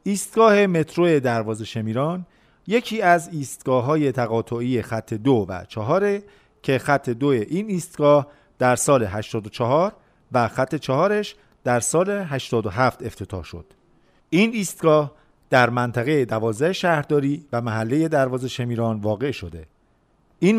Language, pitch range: Persian, 120-165 Hz